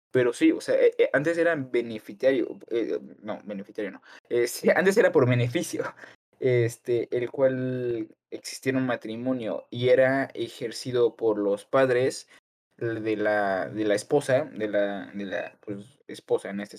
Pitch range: 110-135 Hz